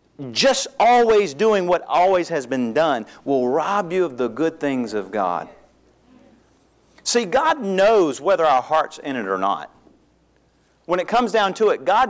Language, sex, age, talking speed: English, male, 40-59, 170 wpm